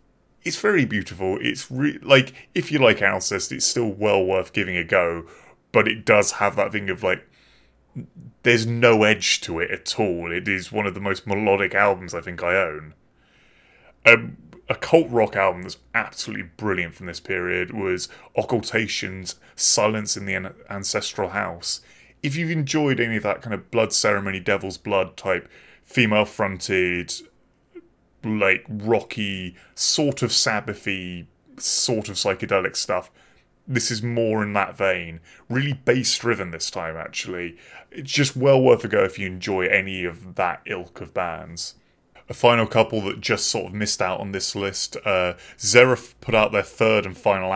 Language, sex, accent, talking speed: English, male, British, 165 wpm